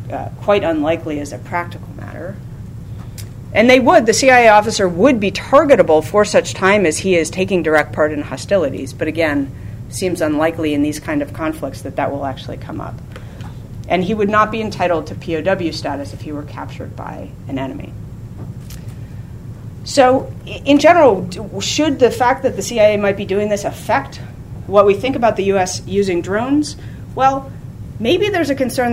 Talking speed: 175 wpm